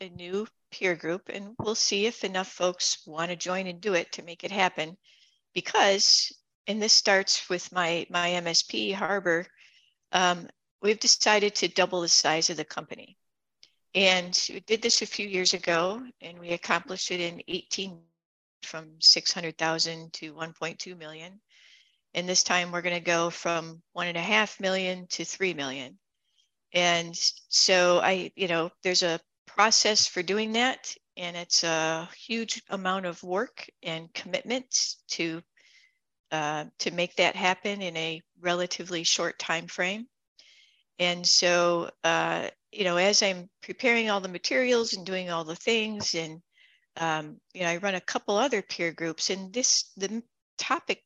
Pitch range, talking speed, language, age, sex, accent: 170-200 Hz, 160 wpm, English, 60-79, female, American